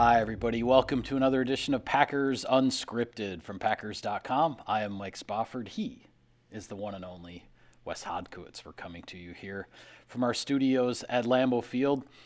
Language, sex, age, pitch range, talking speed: English, male, 30-49, 100-130 Hz, 165 wpm